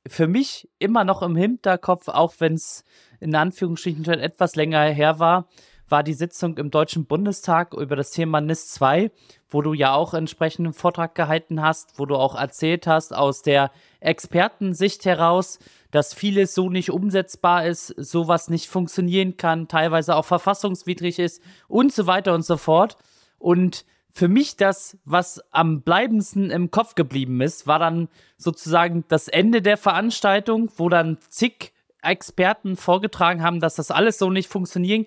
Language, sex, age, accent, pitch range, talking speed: German, male, 20-39, German, 160-195 Hz, 165 wpm